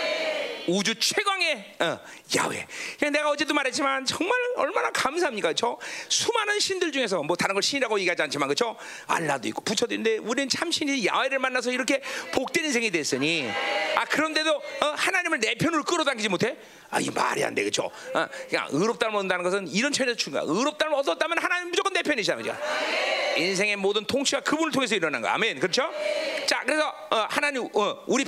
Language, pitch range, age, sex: Korean, 245-325 Hz, 40-59, male